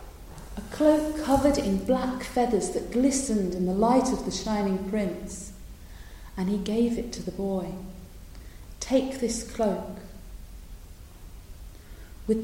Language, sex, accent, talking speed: English, female, British, 120 wpm